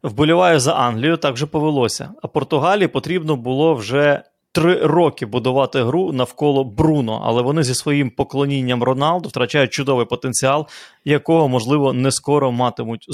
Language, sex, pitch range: Ukrainian, male, 130-160 Hz